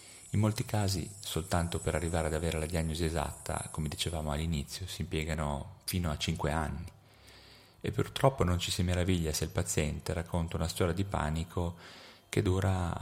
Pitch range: 75-100 Hz